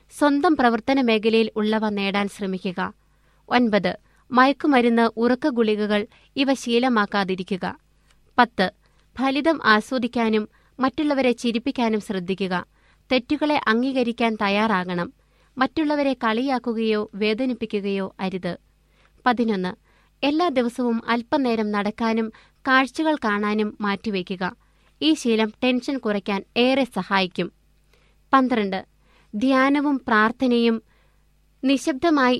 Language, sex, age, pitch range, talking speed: Malayalam, female, 20-39, 205-255 Hz, 80 wpm